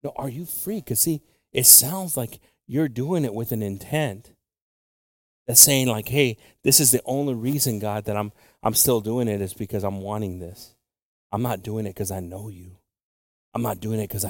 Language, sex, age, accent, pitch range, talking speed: English, male, 40-59, American, 95-120 Hz, 205 wpm